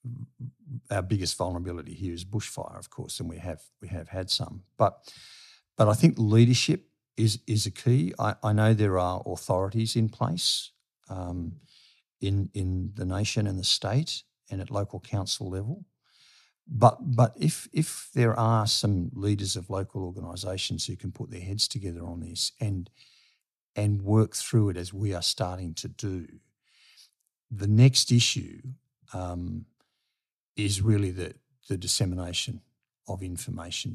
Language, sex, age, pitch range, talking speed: English, male, 50-69, 90-120 Hz, 150 wpm